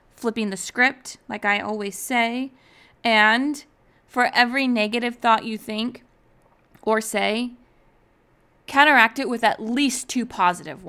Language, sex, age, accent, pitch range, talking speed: English, female, 20-39, American, 205-245 Hz, 125 wpm